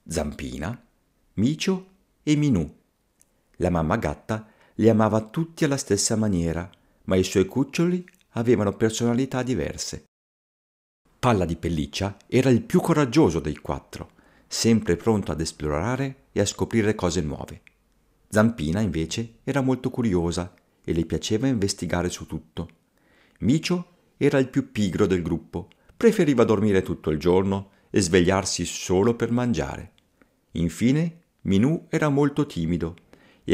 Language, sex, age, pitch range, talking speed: Italian, male, 50-69, 85-125 Hz, 130 wpm